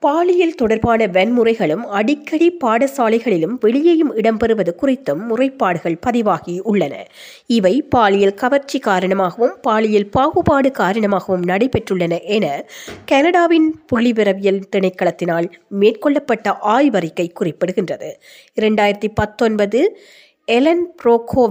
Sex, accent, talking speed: female, native, 85 wpm